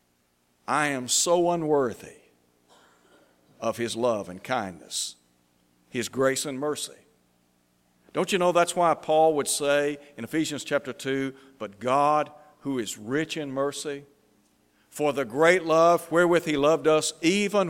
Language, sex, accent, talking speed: English, male, American, 140 wpm